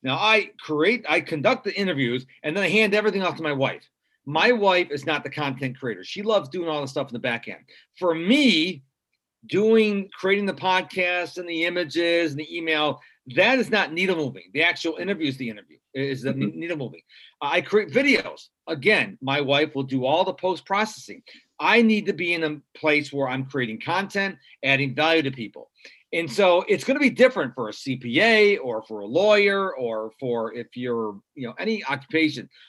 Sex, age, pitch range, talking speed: male, 40-59, 135-200 Hz, 200 wpm